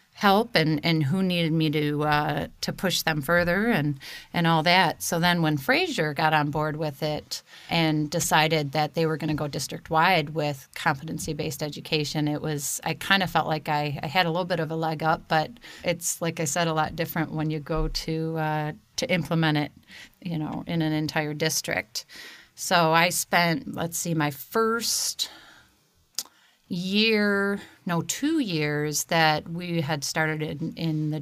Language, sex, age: English, female, 40-59